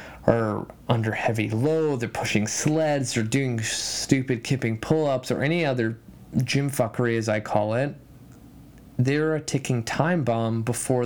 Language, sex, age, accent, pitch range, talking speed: English, male, 20-39, American, 115-135 Hz, 145 wpm